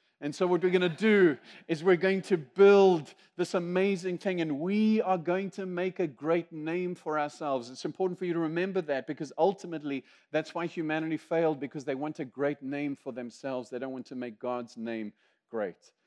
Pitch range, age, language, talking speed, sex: 135-175 Hz, 40-59, English, 205 wpm, male